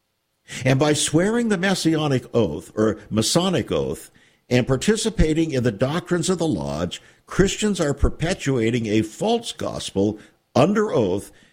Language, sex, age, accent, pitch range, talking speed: English, male, 60-79, American, 105-155 Hz, 130 wpm